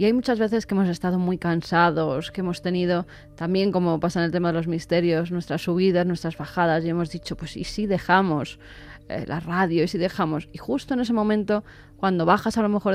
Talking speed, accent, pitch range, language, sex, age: 225 wpm, Spanish, 175-200 Hz, Spanish, female, 20-39